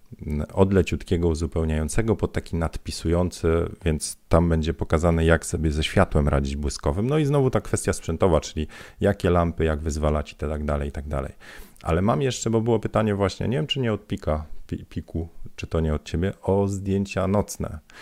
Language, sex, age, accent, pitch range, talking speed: Polish, male, 40-59, native, 80-100 Hz, 180 wpm